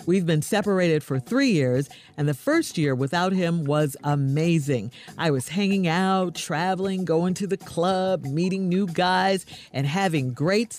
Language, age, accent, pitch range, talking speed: English, 50-69, American, 145-205 Hz, 160 wpm